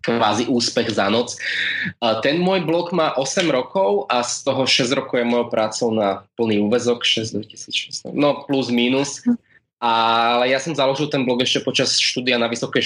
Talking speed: 170 wpm